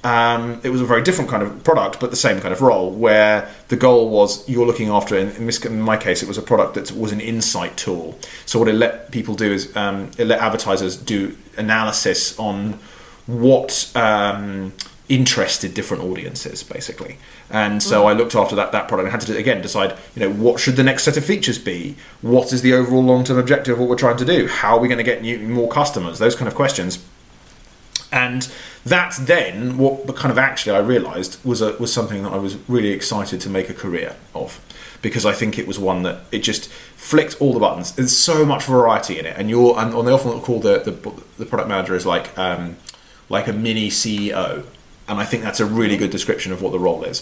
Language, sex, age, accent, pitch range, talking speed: English, male, 30-49, British, 100-125 Hz, 225 wpm